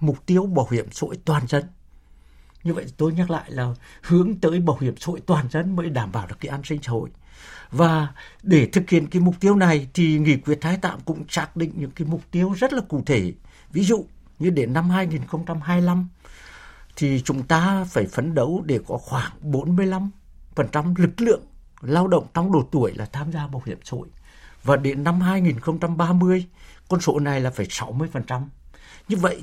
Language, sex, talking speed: Vietnamese, male, 200 wpm